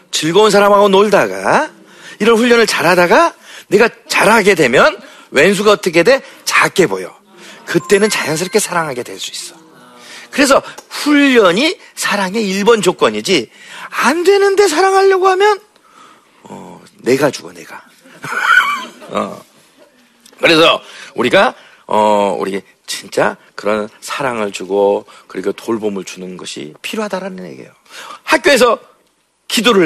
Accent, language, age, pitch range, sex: native, Korean, 40-59, 190-290 Hz, male